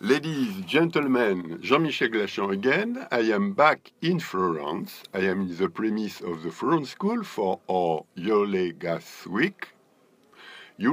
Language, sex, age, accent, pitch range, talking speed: English, male, 60-79, French, 90-140 Hz, 135 wpm